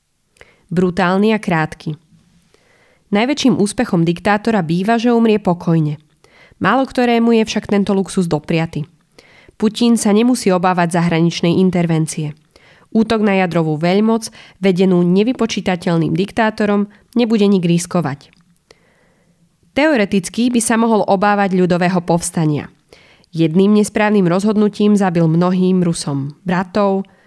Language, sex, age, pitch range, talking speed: Slovak, female, 20-39, 170-210 Hz, 105 wpm